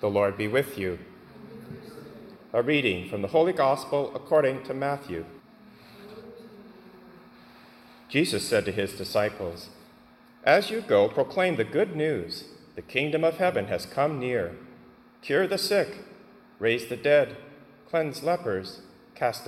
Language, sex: English, male